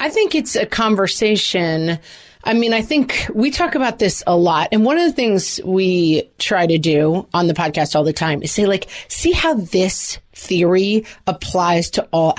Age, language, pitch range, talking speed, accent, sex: 30-49, English, 170-255 Hz, 195 wpm, American, female